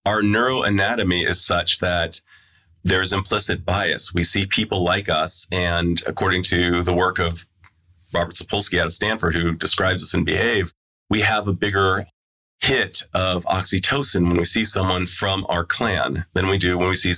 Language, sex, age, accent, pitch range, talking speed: English, male, 30-49, American, 85-105 Hz, 175 wpm